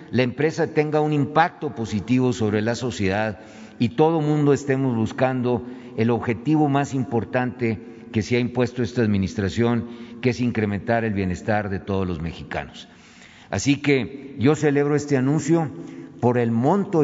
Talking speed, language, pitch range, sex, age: 150 wpm, Spanish, 115-140 Hz, male, 50-69